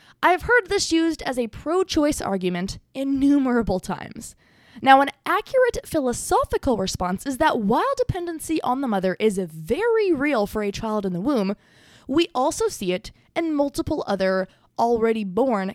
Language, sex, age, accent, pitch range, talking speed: English, female, 20-39, American, 215-315 Hz, 150 wpm